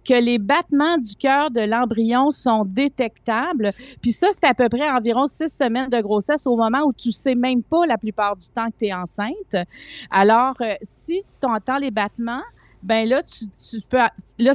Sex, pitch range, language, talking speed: female, 205-255 Hz, French, 195 wpm